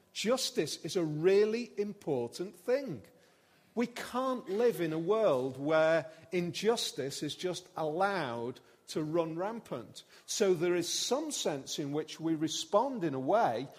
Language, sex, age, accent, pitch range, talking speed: English, male, 40-59, British, 130-185 Hz, 140 wpm